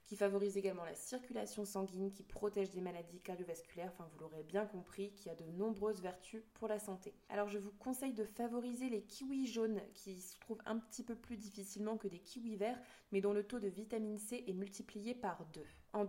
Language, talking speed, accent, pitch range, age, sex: French, 215 wpm, French, 190-225 Hz, 20-39, female